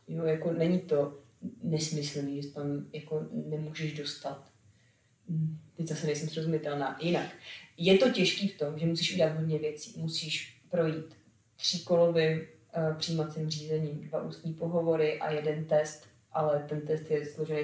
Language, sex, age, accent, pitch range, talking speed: Czech, female, 30-49, native, 150-165 Hz, 140 wpm